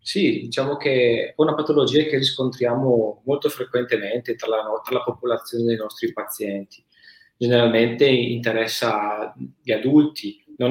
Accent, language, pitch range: native, Italian, 110-130 Hz